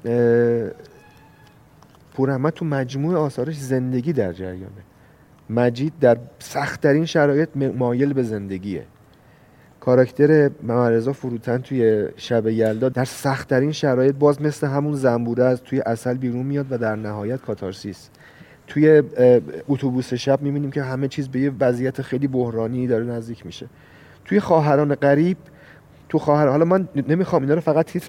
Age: 40-59